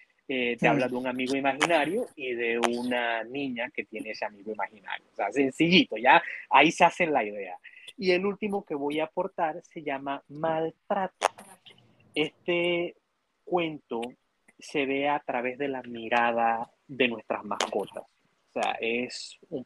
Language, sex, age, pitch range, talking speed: Spanish, male, 30-49, 120-150 Hz, 155 wpm